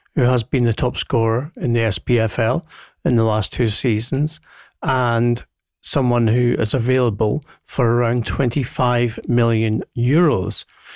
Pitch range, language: 110-130 Hz, English